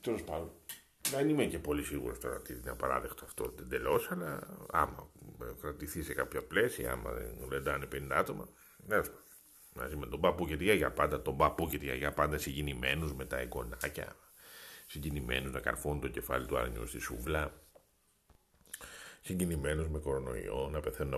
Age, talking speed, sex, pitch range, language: 50-69, 160 wpm, male, 65-80 Hz, Greek